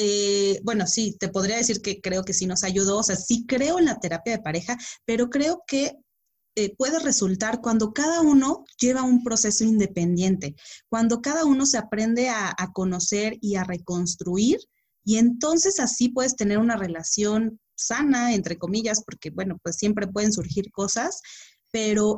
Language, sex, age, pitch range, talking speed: Spanish, female, 30-49, 185-245 Hz, 170 wpm